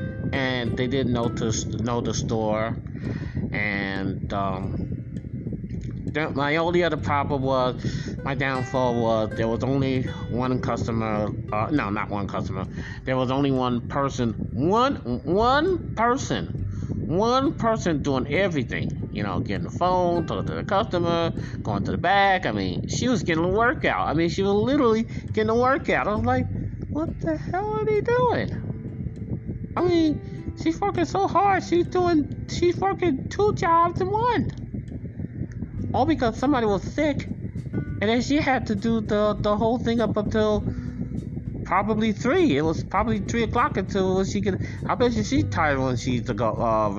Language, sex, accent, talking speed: English, male, American, 160 wpm